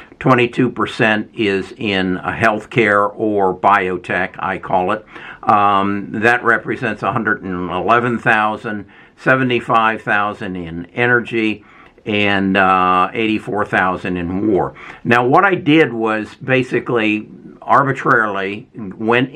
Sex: male